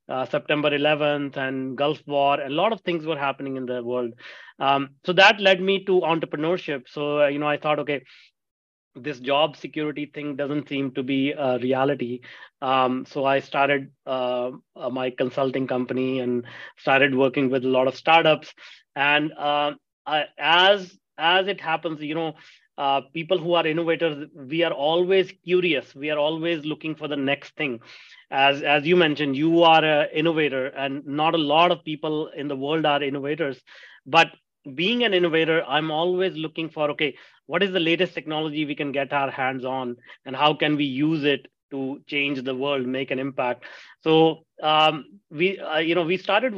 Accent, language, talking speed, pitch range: Indian, English, 180 wpm, 140-165 Hz